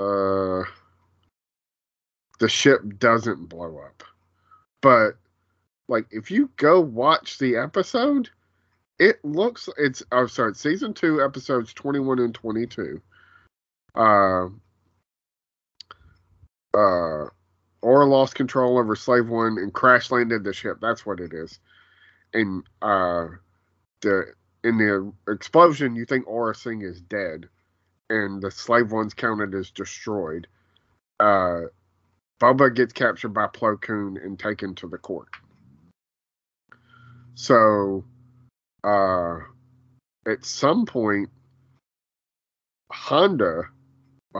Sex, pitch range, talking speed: male, 95-135 Hz, 110 wpm